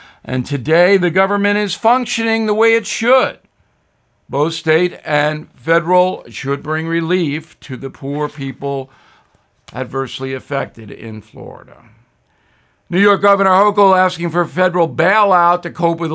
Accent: American